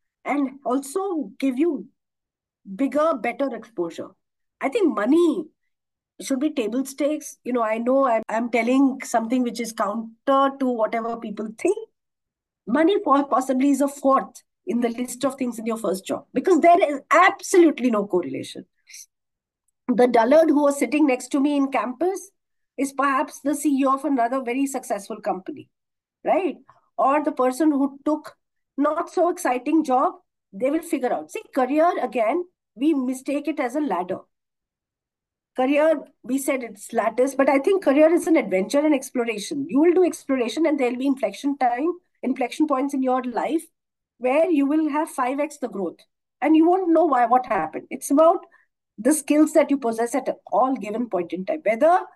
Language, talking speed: English, 170 wpm